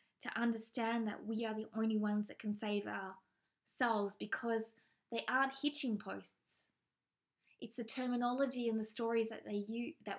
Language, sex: English, female